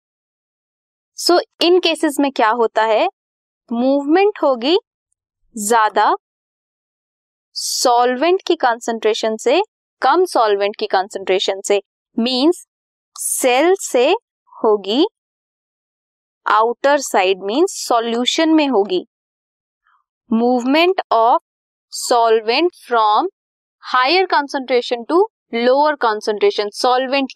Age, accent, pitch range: 20-39, native, 215-310 Hz